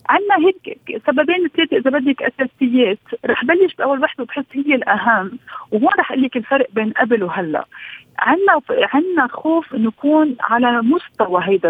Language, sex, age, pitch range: Arabic, female, 40-59, 220-280 Hz